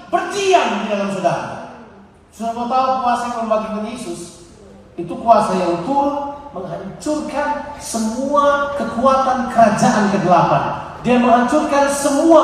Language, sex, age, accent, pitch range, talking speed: Indonesian, male, 40-59, native, 200-275 Hz, 100 wpm